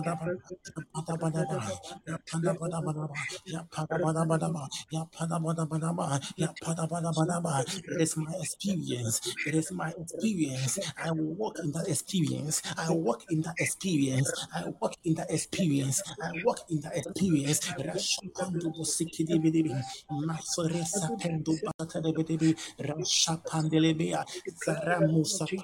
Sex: male